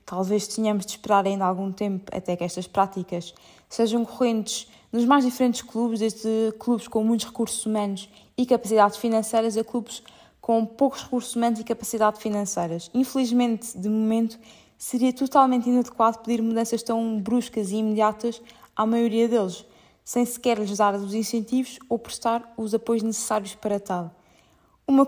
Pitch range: 210-245 Hz